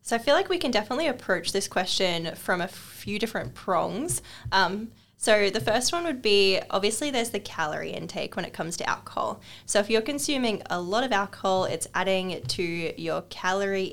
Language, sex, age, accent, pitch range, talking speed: English, female, 10-29, Australian, 180-220 Hz, 195 wpm